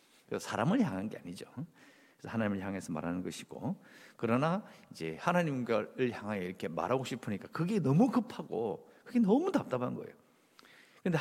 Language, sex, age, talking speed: English, male, 50-69, 130 wpm